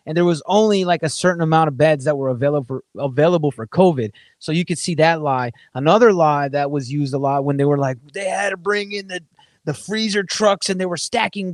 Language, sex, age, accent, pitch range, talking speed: English, male, 30-49, American, 145-185 Hz, 245 wpm